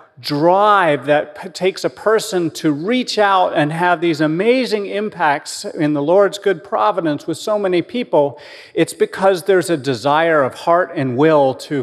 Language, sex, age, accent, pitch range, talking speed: English, male, 40-59, American, 145-190 Hz, 160 wpm